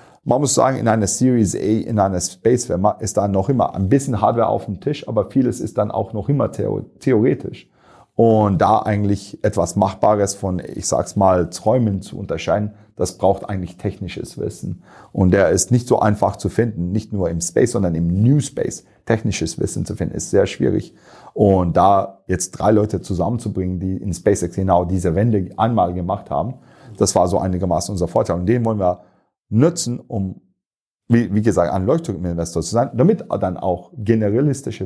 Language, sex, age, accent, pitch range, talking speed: German, male, 40-59, German, 95-115 Hz, 185 wpm